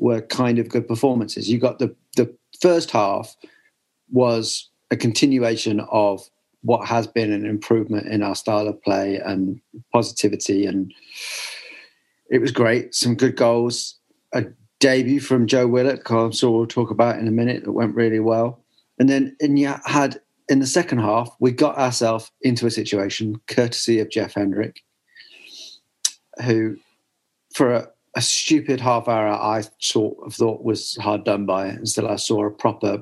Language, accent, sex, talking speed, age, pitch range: English, British, male, 165 wpm, 40-59, 105-130 Hz